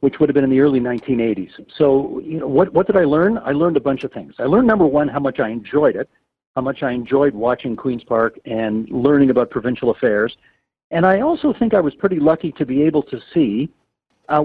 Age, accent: 50-69, American